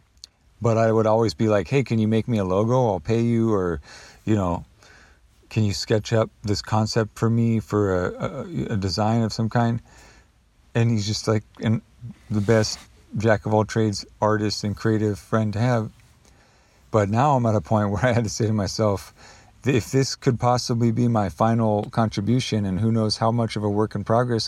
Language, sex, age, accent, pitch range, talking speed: English, male, 40-59, American, 100-115 Hz, 200 wpm